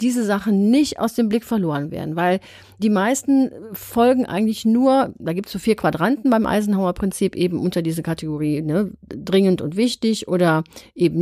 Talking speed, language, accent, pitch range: 170 wpm, German, German, 180-230 Hz